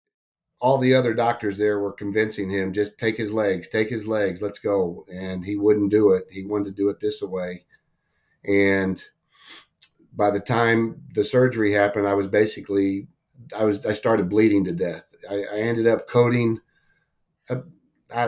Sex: male